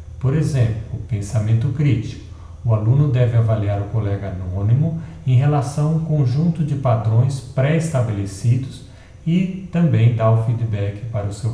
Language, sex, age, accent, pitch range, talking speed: Portuguese, male, 50-69, Brazilian, 110-140 Hz, 145 wpm